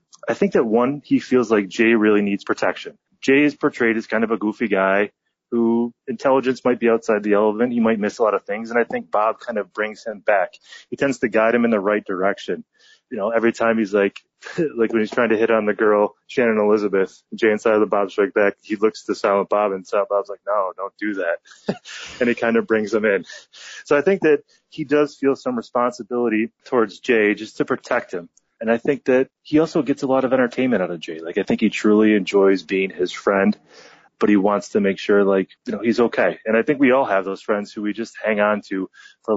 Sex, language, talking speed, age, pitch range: male, English, 245 wpm, 20-39, 100-120 Hz